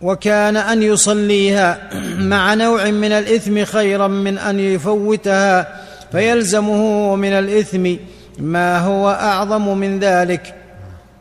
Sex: male